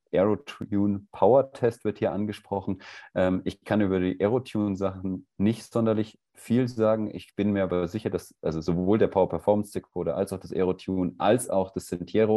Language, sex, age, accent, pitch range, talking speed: German, male, 30-49, German, 90-110 Hz, 165 wpm